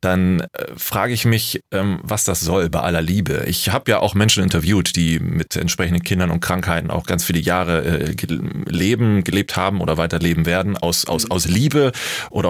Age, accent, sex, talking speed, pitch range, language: 30-49, German, male, 190 wpm, 85-100 Hz, German